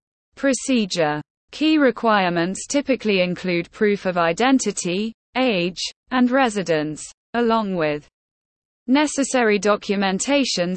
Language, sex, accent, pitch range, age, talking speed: English, female, British, 180-250 Hz, 20-39, 85 wpm